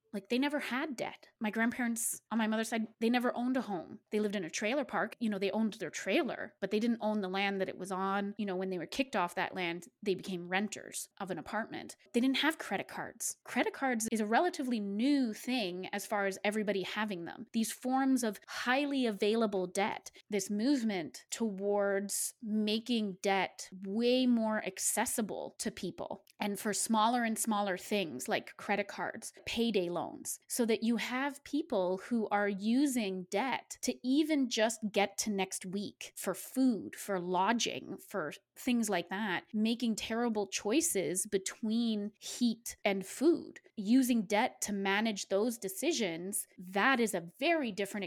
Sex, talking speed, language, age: female, 175 wpm, English, 20-39